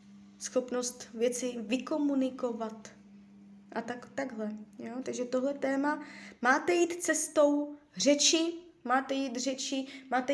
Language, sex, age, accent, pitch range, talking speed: Czech, female, 20-39, native, 210-255 Hz, 105 wpm